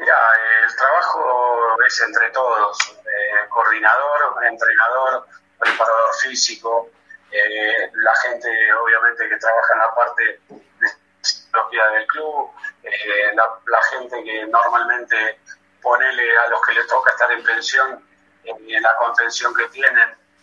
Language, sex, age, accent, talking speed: Spanish, male, 30-49, Argentinian, 140 wpm